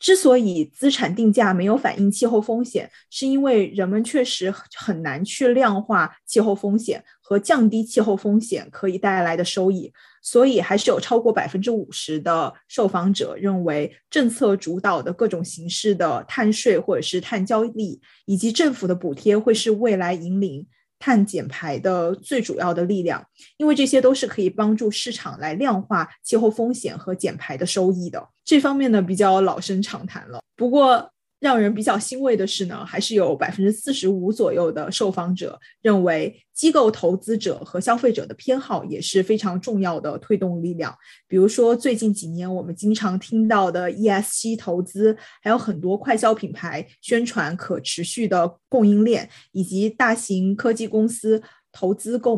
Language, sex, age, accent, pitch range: Chinese, female, 20-39, native, 185-230 Hz